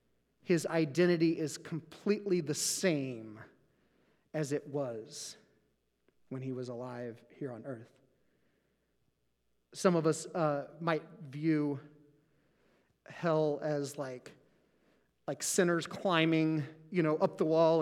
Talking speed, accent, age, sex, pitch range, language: 110 wpm, American, 40-59, male, 150-215 Hz, English